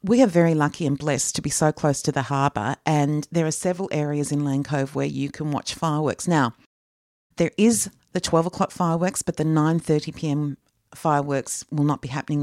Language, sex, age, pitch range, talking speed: English, female, 40-59, 140-165 Hz, 215 wpm